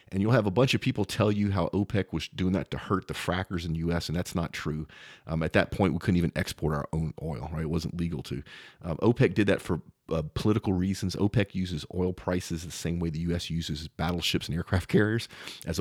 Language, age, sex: English, 40-59, male